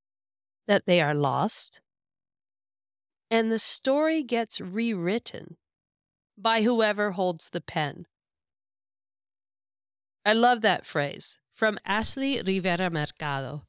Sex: female